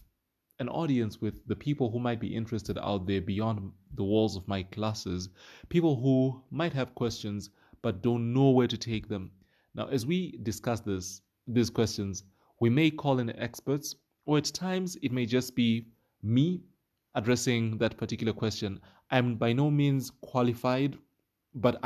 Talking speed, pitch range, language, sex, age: 160 wpm, 105-125 Hz, English, male, 20-39